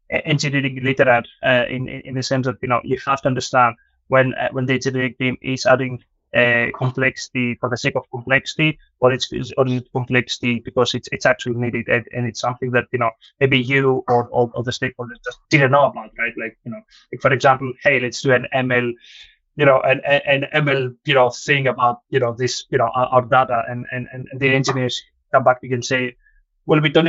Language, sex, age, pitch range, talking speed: English, male, 20-39, 125-135 Hz, 215 wpm